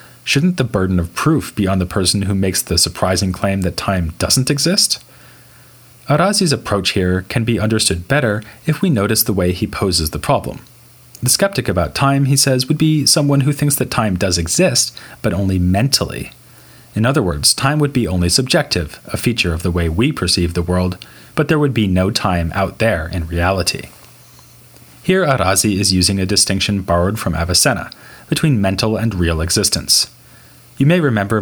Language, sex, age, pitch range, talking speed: English, male, 30-49, 90-125 Hz, 185 wpm